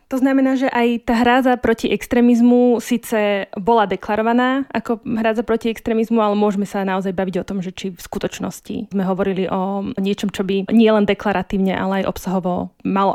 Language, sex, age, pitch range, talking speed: Slovak, female, 20-39, 190-215 Hz, 175 wpm